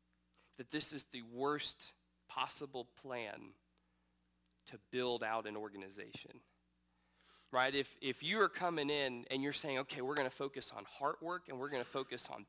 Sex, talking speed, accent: male, 175 wpm, American